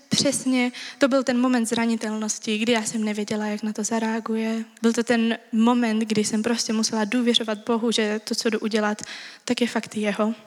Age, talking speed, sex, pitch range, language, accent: 20-39, 190 wpm, female, 220-245 Hz, Czech, native